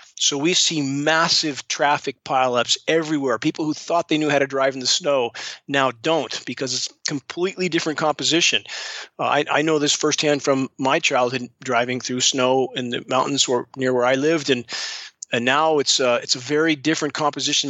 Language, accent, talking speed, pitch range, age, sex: English, American, 190 wpm, 130-155 Hz, 40-59, male